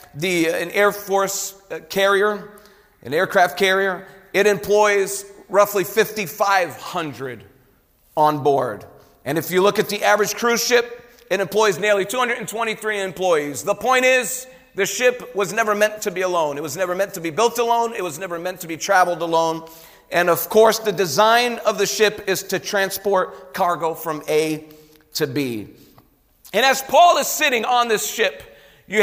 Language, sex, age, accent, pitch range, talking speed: English, male, 40-59, American, 165-210 Hz, 165 wpm